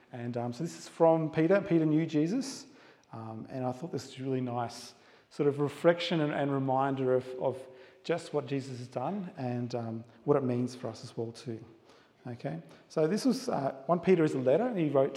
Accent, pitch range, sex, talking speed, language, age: Australian, 130-170 Hz, male, 220 wpm, English, 40-59